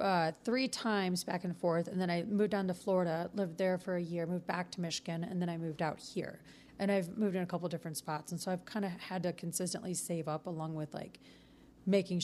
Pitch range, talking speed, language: 165-195 Hz, 245 wpm, English